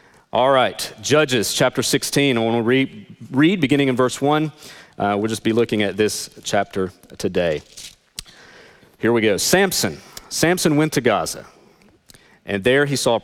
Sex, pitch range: male, 115-160 Hz